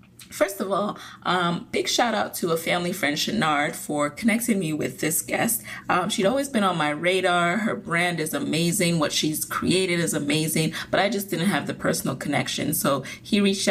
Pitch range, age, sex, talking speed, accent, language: 155-205 Hz, 30-49, female, 195 wpm, American, English